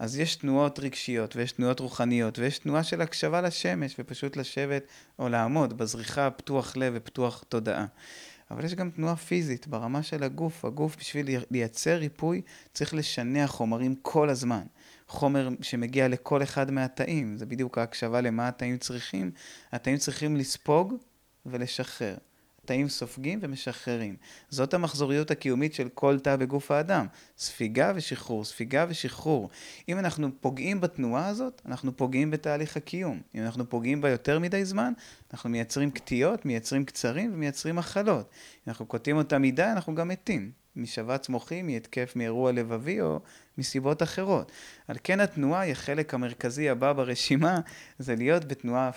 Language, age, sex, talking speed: Hebrew, 30-49, male, 145 wpm